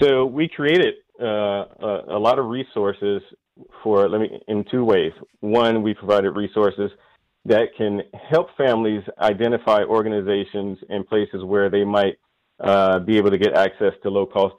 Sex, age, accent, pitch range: male, 40-59, American, 100-115 Hz